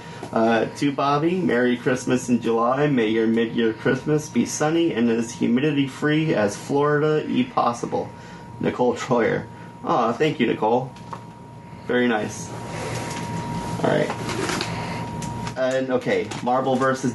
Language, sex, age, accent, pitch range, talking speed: English, male, 30-49, American, 115-140 Hz, 120 wpm